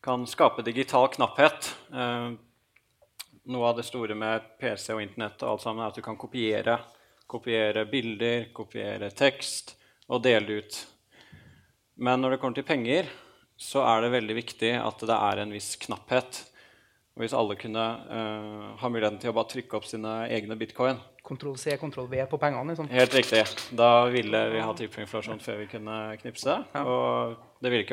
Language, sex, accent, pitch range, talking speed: English, male, Norwegian, 110-120 Hz, 170 wpm